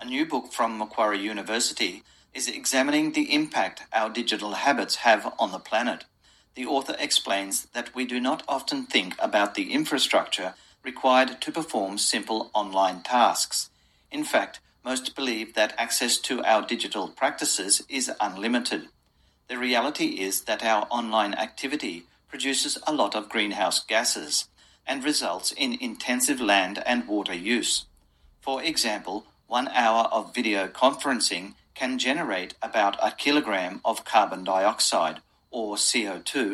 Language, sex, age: Japanese, male, 50-69